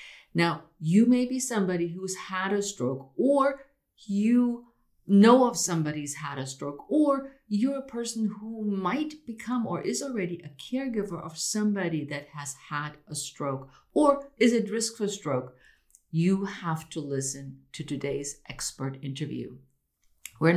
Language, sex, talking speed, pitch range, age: English, female, 150 wpm, 145-205 Hz, 50-69